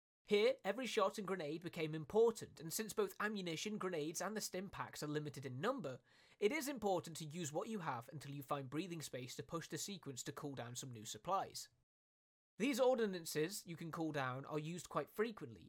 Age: 20-39